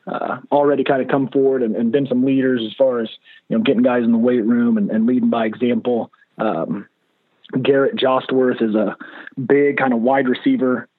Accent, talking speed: American, 200 wpm